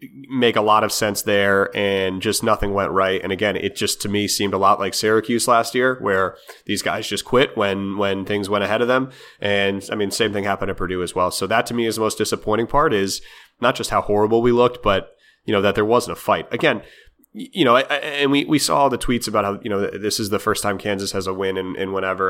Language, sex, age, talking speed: English, male, 30-49, 255 wpm